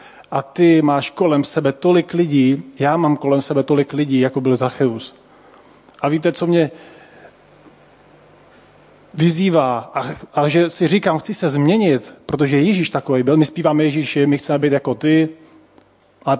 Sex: male